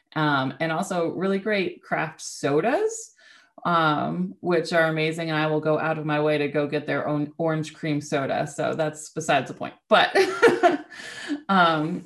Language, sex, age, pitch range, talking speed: English, female, 20-39, 150-175 Hz, 170 wpm